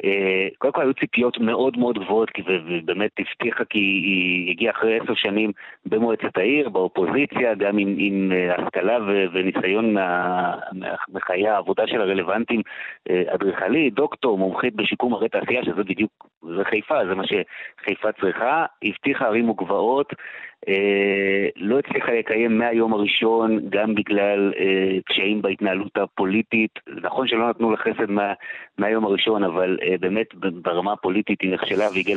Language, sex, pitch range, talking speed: Hebrew, male, 100-120 Hz, 130 wpm